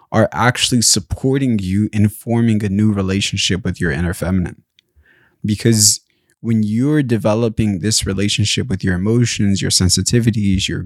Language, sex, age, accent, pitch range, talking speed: English, male, 20-39, American, 100-120 Hz, 140 wpm